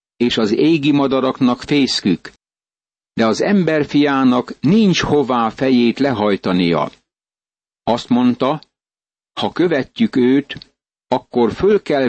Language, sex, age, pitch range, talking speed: Hungarian, male, 60-79, 120-145 Hz, 100 wpm